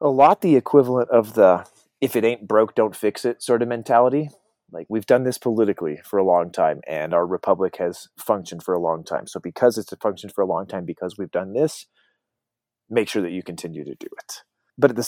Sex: male